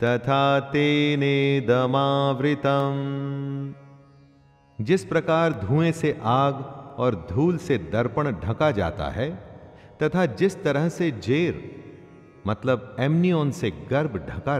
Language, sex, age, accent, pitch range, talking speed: Hindi, male, 40-59, native, 120-160 Hz, 105 wpm